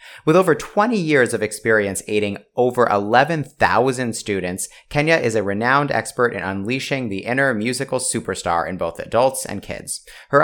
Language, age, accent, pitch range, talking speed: English, 30-49, American, 100-135 Hz, 155 wpm